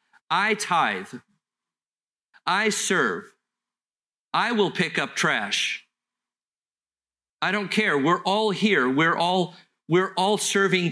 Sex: male